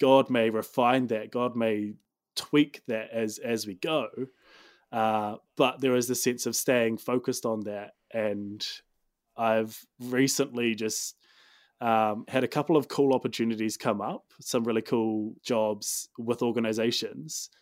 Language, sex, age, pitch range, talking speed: English, male, 20-39, 110-125 Hz, 145 wpm